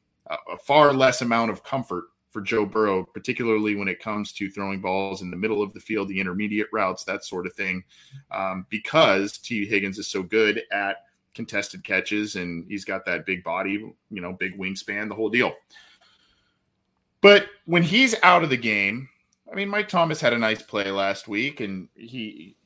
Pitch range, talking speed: 95-120 Hz, 190 wpm